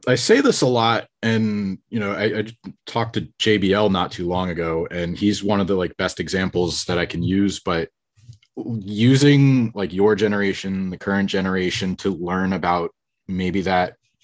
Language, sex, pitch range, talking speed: English, male, 90-105 Hz, 175 wpm